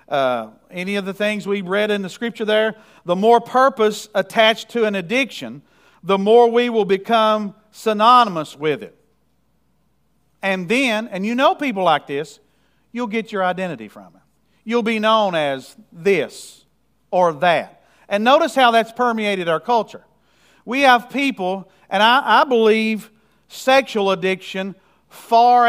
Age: 50-69